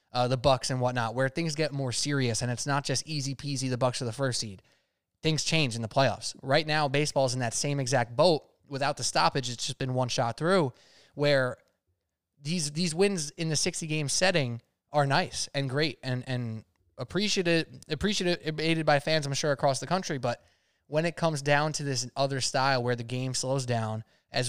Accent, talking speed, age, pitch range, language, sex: American, 205 wpm, 20-39, 125-160 Hz, English, male